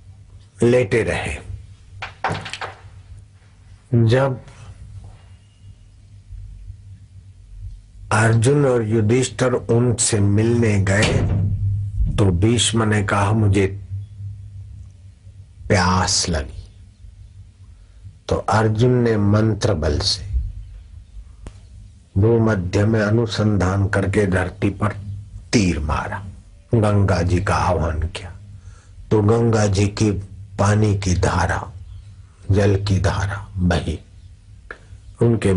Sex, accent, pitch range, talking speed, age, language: male, native, 95-105 Hz, 80 wpm, 50-69, Hindi